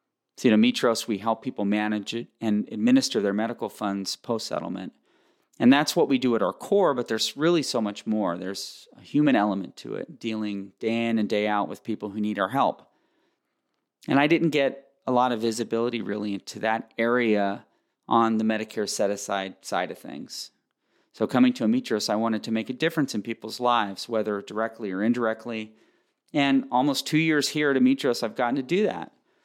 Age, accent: 40-59, American